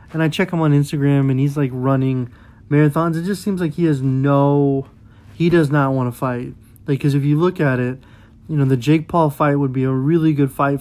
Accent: American